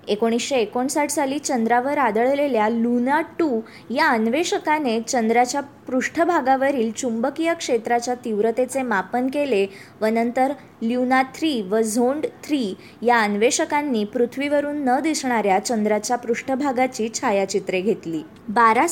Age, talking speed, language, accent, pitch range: 20-39, 105 wpm, Marathi, native, 220-280 Hz